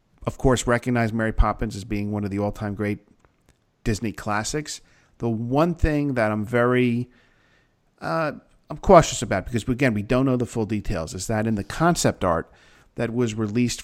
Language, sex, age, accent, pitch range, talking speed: English, male, 40-59, American, 105-125 Hz, 180 wpm